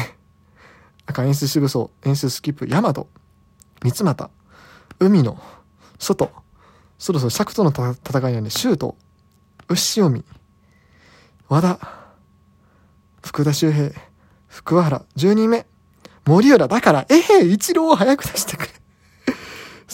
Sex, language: male, Japanese